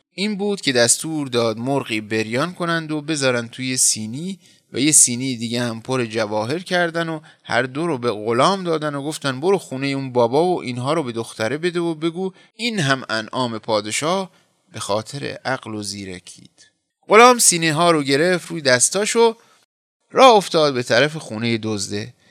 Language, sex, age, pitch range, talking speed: Persian, male, 30-49, 120-170 Hz, 170 wpm